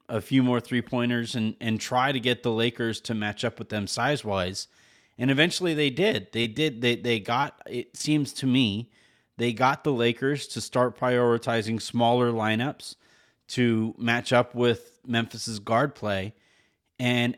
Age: 30-49